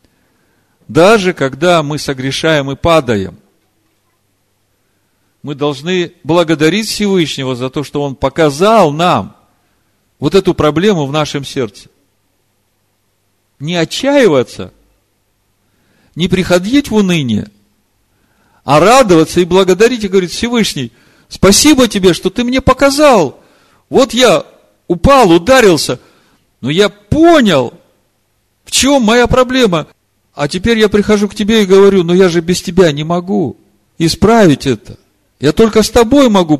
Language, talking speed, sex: Russian, 125 wpm, male